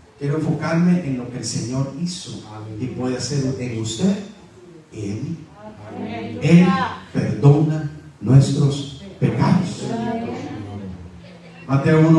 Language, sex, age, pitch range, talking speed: English, male, 40-59, 120-170 Hz, 105 wpm